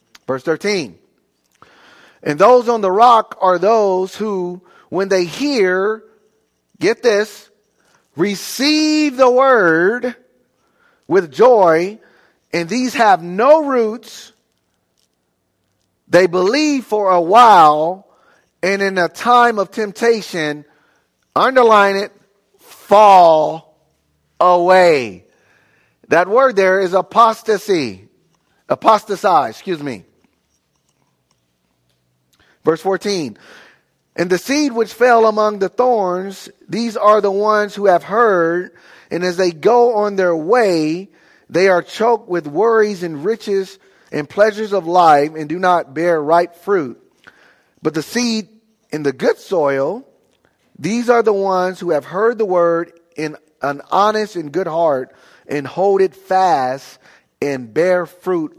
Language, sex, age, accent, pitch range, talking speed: English, male, 40-59, American, 165-220 Hz, 120 wpm